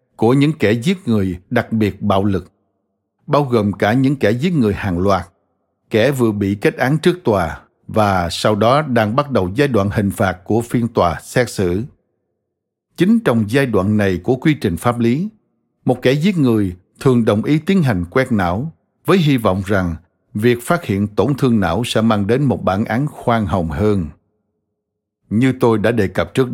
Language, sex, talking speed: Vietnamese, male, 195 wpm